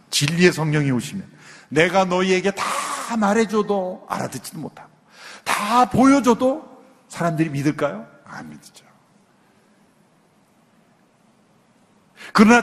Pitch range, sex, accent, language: 150-220 Hz, male, native, Korean